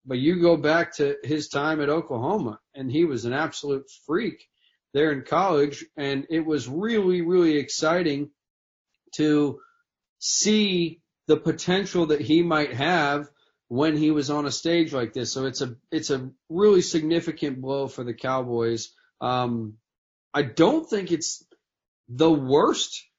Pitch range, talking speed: 130-160 Hz, 150 wpm